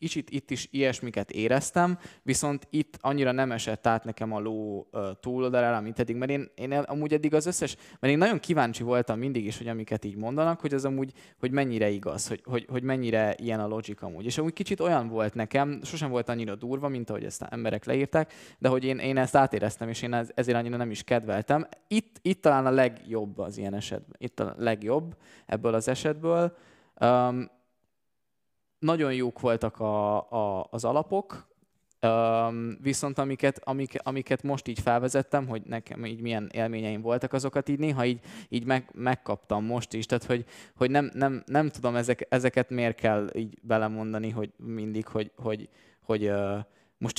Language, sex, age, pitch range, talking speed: Hungarian, male, 20-39, 110-140 Hz, 180 wpm